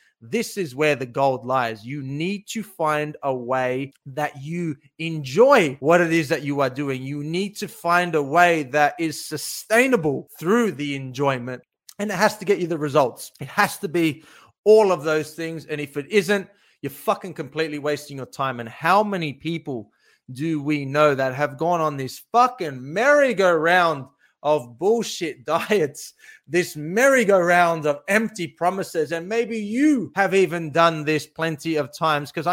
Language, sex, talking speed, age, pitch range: English, male, 170 wpm, 30-49, 150-195 Hz